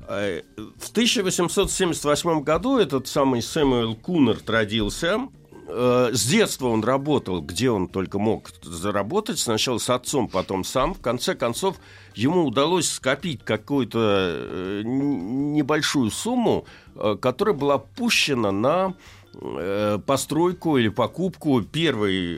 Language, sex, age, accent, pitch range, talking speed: Russian, male, 60-79, native, 105-145 Hz, 100 wpm